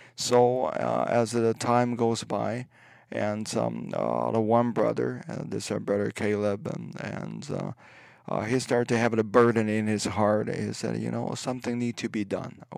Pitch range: 105-115 Hz